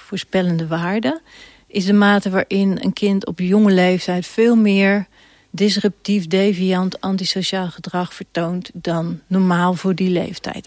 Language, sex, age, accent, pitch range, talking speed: Dutch, female, 40-59, Dutch, 180-210 Hz, 130 wpm